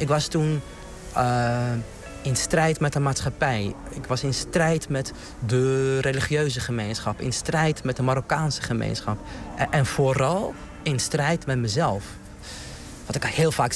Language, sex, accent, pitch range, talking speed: Dutch, male, Dutch, 115-140 Hz, 150 wpm